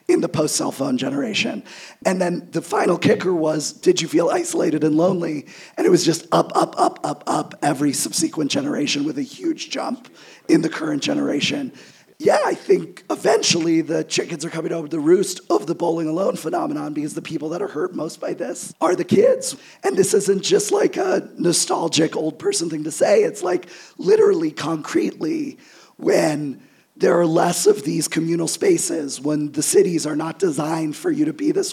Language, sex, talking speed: English, male, 190 wpm